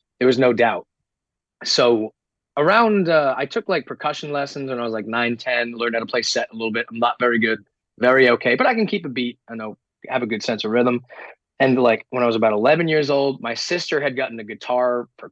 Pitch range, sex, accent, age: 115-145 Hz, male, American, 30-49